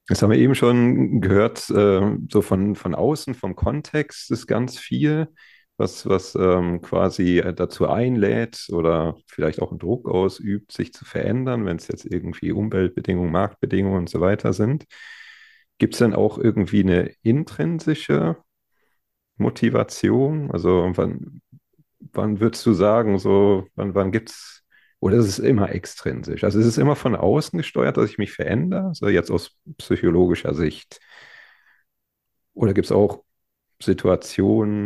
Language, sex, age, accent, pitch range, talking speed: German, male, 40-59, German, 90-120 Hz, 150 wpm